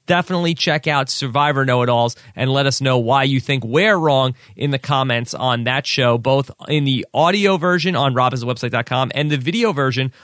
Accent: American